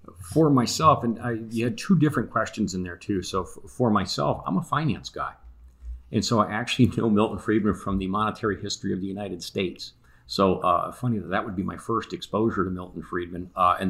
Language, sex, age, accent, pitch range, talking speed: English, male, 40-59, American, 90-110 Hz, 205 wpm